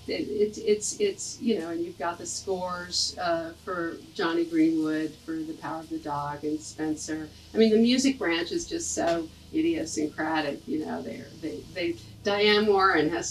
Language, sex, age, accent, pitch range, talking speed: English, female, 50-69, American, 150-200 Hz, 180 wpm